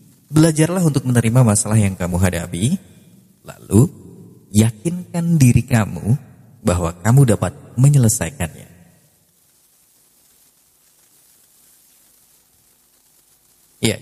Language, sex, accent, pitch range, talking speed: Indonesian, male, native, 100-135 Hz, 70 wpm